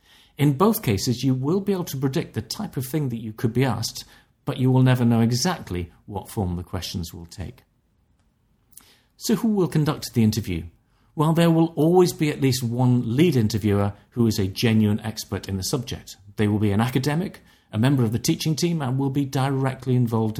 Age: 40-59